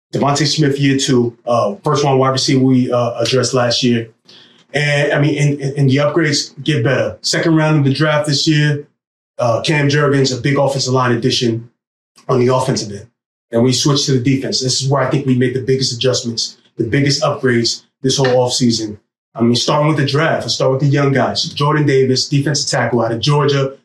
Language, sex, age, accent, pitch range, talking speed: English, male, 20-39, American, 130-150 Hz, 210 wpm